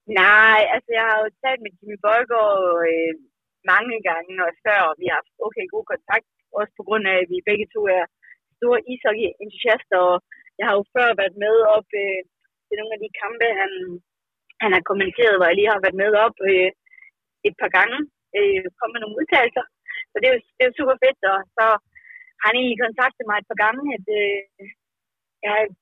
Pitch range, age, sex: 195-250 Hz, 20-39, female